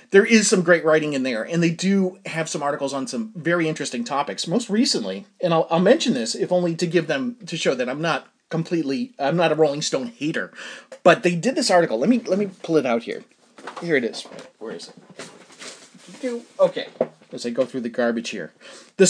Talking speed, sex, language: 215 wpm, male, English